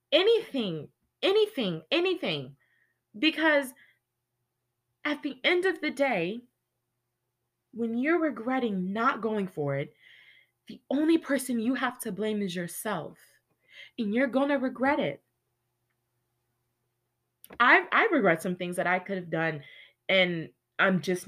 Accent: American